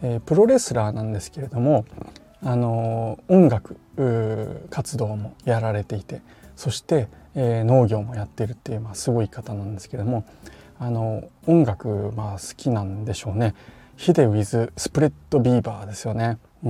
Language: Japanese